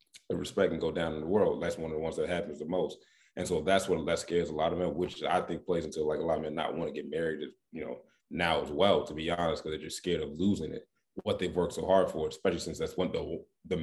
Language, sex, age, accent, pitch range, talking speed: English, male, 20-39, American, 85-100 Hz, 300 wpm